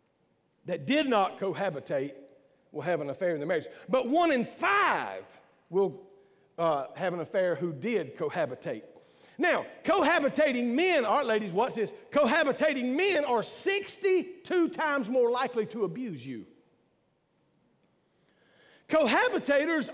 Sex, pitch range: male, 215-290 Hz